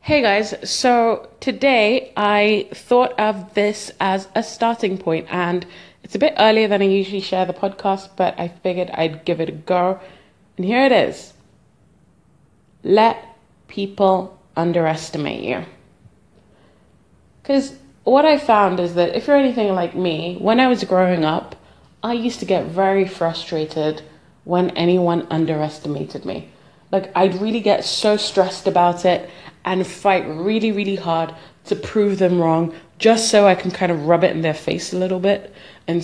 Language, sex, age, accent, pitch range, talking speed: English, female, 20-39, British, 165-205 Hz, 160 wpm